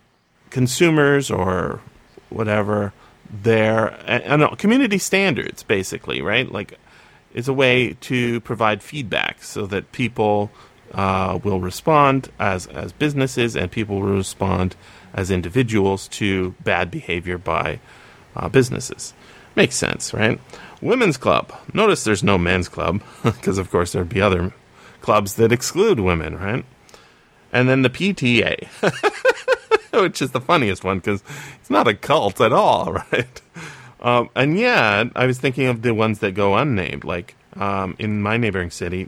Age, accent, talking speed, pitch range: 30-49, American, 145 wpm, 95-125 Hz